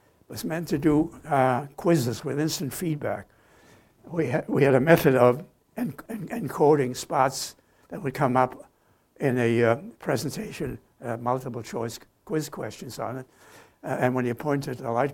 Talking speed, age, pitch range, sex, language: 155 wpm, 70-89, 125-145 Hz, male, English